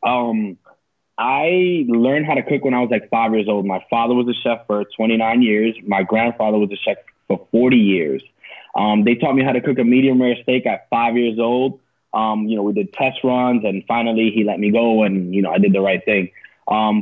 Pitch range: 110-130 Hz